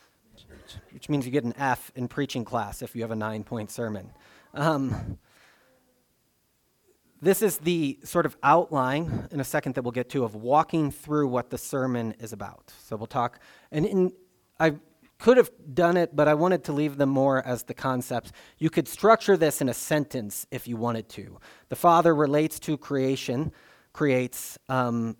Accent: American